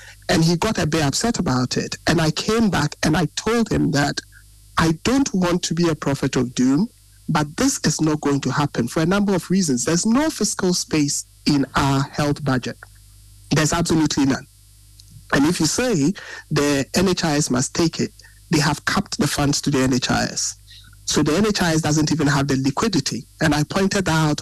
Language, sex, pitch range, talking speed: English, male, 130-175 Hz, 195 wpm